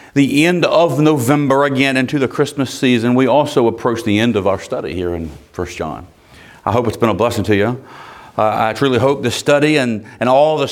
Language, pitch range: English, 115-145 Hz